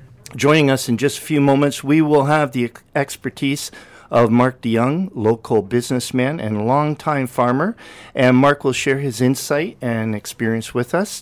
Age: 50-69